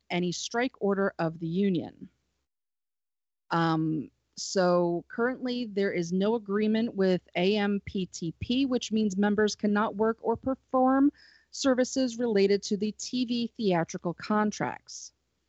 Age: 30-49